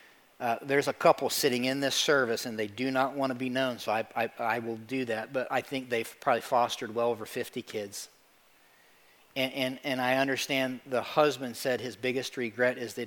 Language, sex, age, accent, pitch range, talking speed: English, male, 40-59, American, 120-140 Hz, 200 wpm